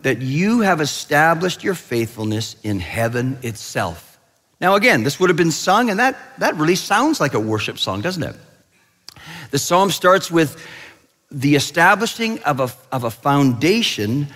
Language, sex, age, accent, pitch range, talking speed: English, male, 50-69, American, 130-185 Hz, 155 wpm